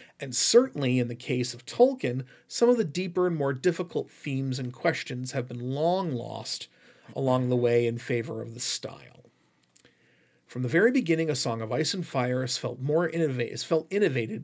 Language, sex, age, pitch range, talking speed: English, male, 40-59, 120-165 Hz, 180 wpm